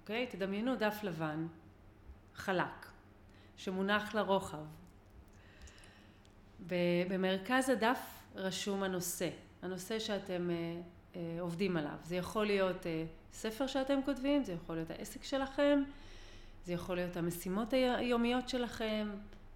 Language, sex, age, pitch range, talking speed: Hebrew, female, 30-49, 165-210 Hz, 110 wpm